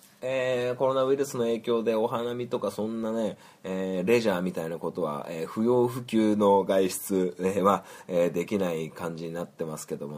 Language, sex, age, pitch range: Japanese, male, 20-39, 85-105 Hz